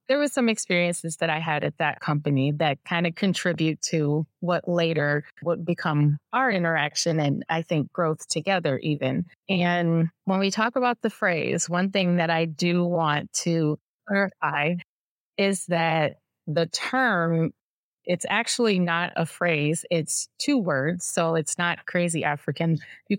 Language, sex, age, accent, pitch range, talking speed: English, female, 20-39, American, 160-195 Hz, 155 wpm